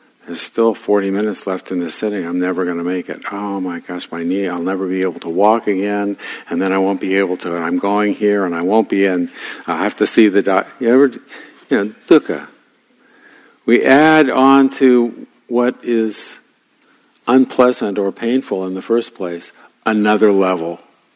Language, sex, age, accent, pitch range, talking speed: English, male, 50-69, American, 95-115 Hz, 195 wpm